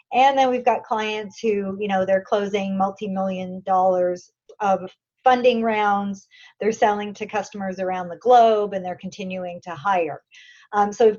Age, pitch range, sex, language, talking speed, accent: 30-49, 200-255 Hz, female, English, 160 wpm, American